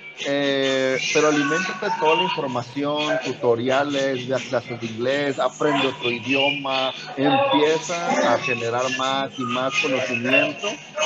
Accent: Mexican